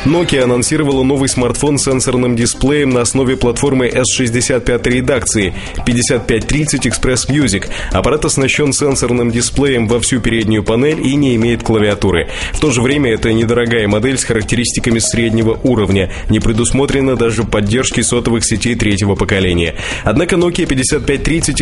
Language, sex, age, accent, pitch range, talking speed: Russian, male, 20-39, native, 115-135 Hz, 135 wpm